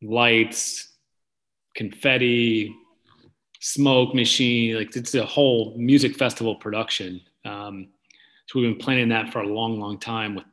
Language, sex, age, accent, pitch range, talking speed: English, male, 30-49, American, 105-125 Hz, 130 wpm